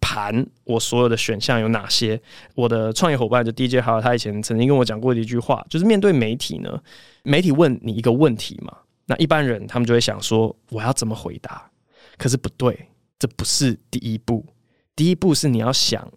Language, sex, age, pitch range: Chinese, male, 20-39, 115-140 Hz